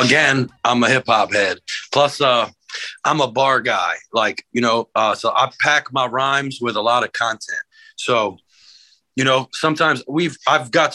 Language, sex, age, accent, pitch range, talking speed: English, male, 30-49, American, 120-165 Hz, 180 wpm